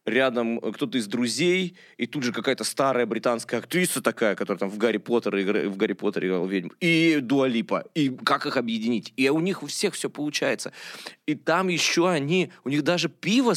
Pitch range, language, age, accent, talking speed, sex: 115-155 Hz, Russian, 20-39, native, 185 wpm, male